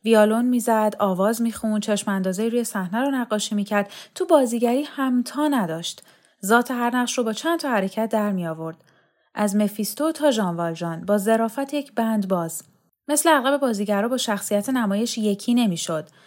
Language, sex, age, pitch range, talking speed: Persian, female, 10-29, 200-270 Hz, 165 wpm